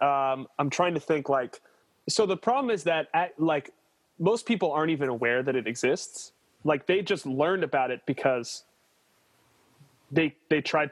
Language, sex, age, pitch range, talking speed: English, male, 30-49, 125-155 Hz, 165 wpm